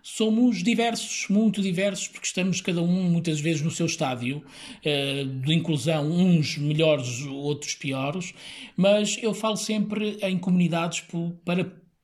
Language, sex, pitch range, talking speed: Portuguese, male, 150-185 Hz, 130 wpm